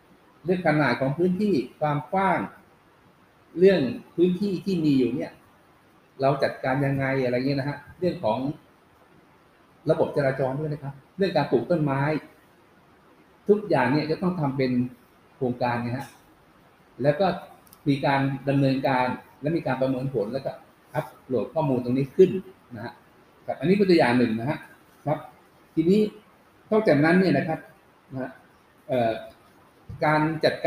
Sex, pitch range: male, 130-170 Hz